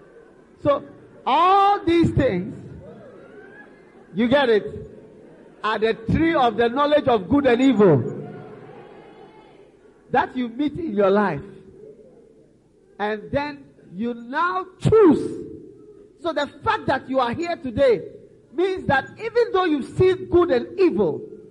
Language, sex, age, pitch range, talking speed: English, male, 50-69, 215-355 Hz, 125 wpm